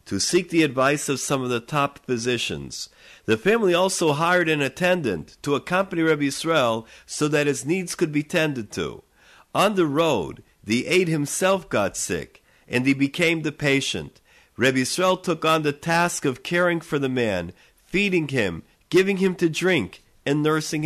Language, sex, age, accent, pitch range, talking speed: English, male, 50-69, American, 135-175 Hz, 175 wpm